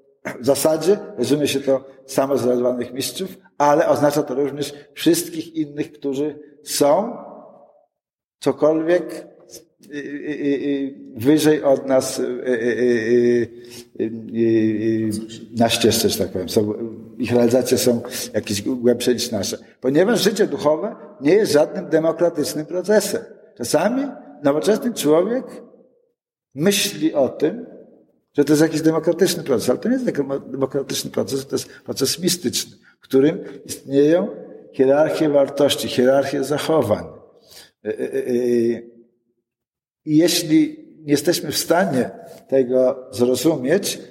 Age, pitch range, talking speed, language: 50-69, 125-160 Hz, 105 wpm, Polish